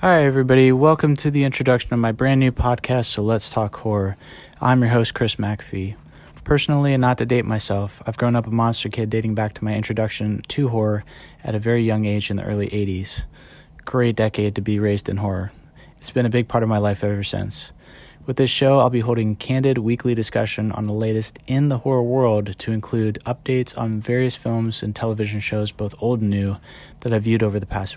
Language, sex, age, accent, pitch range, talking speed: English, male, 20-39, American, 105-120 Hz, 215 wpm